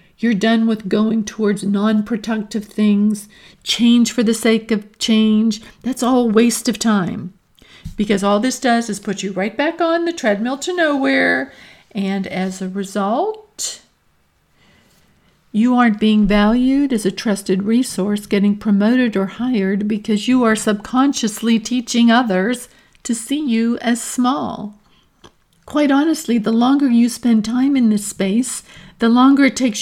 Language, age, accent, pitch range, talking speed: English, 50-69, American, 205-245 Hz, 150 wpm